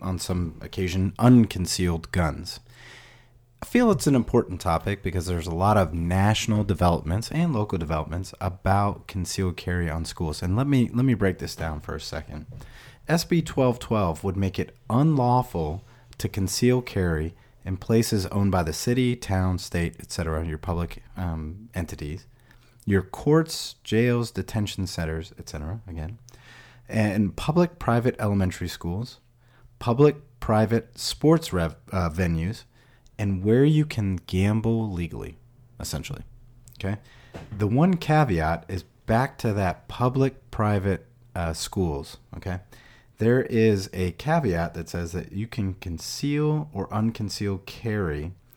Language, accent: English, American